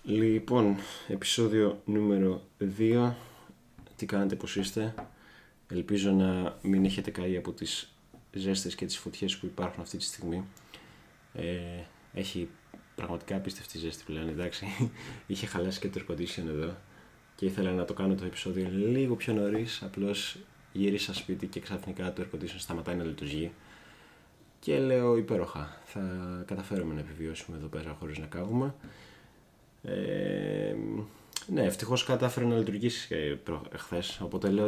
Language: Greek